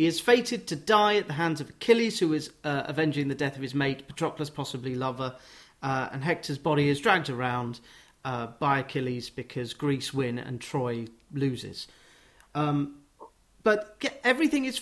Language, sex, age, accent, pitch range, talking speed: English, male, 40-59, British, 140-190 Hz, 170 wpm